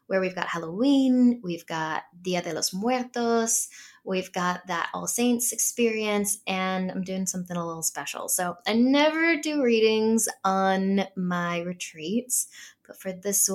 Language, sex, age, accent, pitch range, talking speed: English, female, 10-29, American, 175-210 Hz, 150 wpm